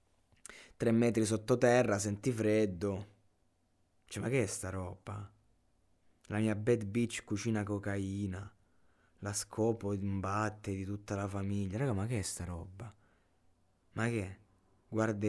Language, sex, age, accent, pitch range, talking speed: Italian, male, 20-39, native, 95-125 Hz, 130 wpm